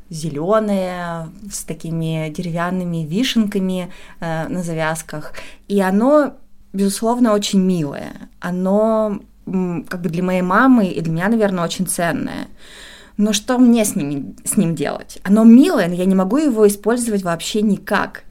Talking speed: 135 wpm